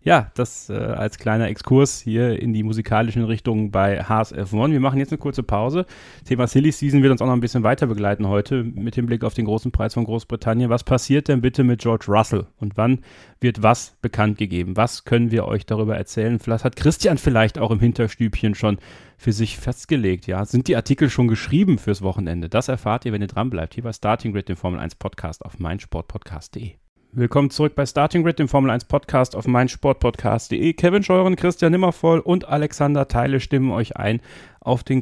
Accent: German